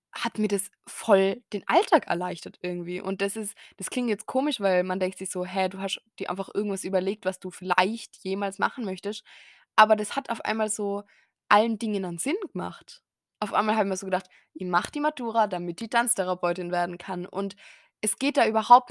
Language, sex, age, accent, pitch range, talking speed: German, female, 20-39, German, 185-210 Hz, 205 wpm